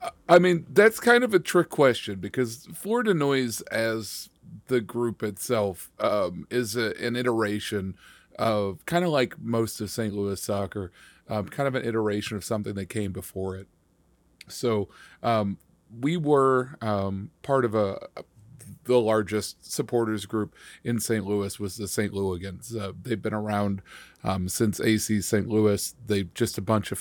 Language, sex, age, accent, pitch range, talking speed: English, male, 40-59, American, 95-115 Hz, 160 wpm